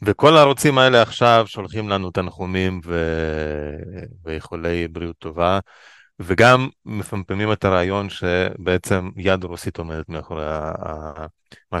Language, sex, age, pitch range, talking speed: Hebrew, male, 30-49, 95-135 Hz, 105 wpm